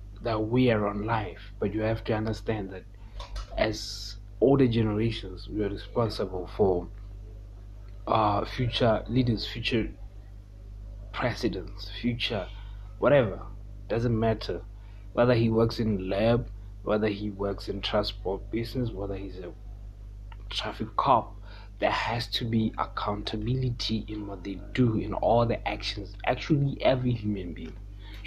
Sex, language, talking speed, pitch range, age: male, English, 125 wpm, 100-110 Hz, 30-49